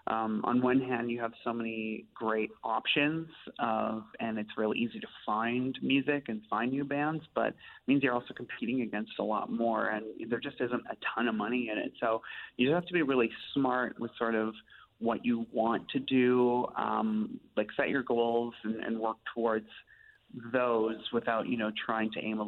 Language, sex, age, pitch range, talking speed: English, male, 30-49, 110-125 Hz, 205 wpm